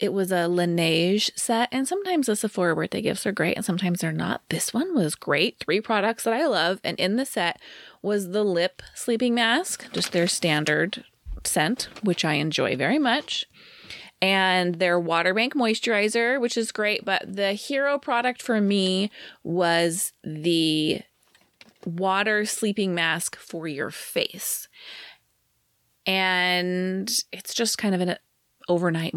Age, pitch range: 20-39, 175-230 Hz